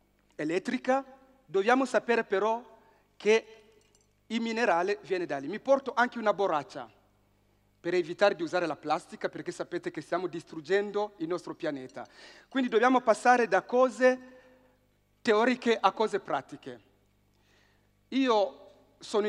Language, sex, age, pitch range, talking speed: Italian, male, 40-59, 165-245 Hz, 125 wpm